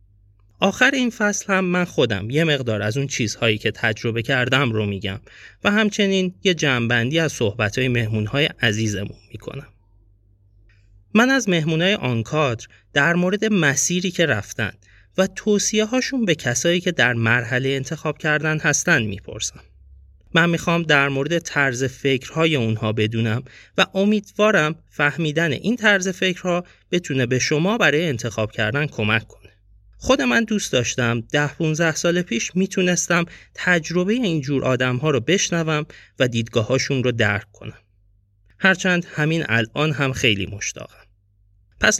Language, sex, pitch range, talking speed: Persian, male, 110-175 Hz, 135 wpm